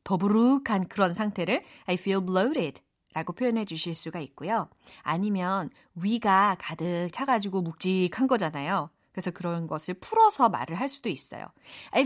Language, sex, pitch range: Korean, female, 180-270 Hz